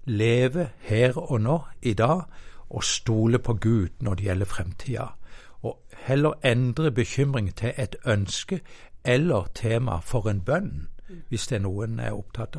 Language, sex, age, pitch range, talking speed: English, male, 60-79, 100-125 Hz, 155 wpm